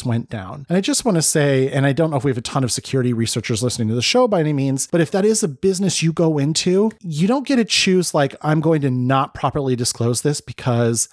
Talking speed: 270 wpm